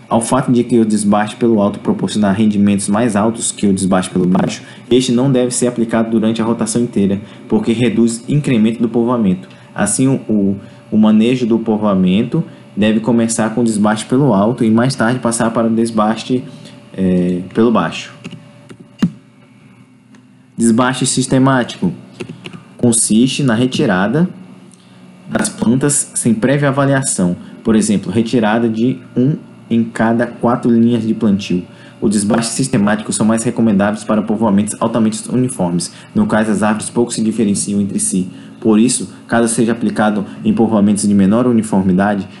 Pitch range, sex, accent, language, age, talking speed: 105-125 Hz, male, Brazilian, Portuguese, 20-39, 150 wpm